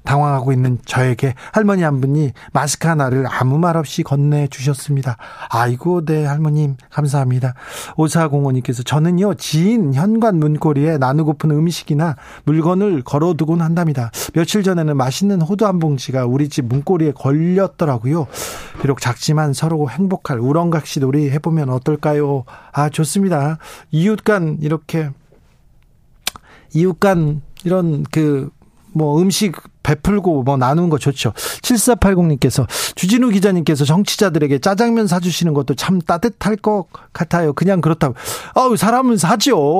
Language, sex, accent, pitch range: Korean, male, native, 135-175 Hz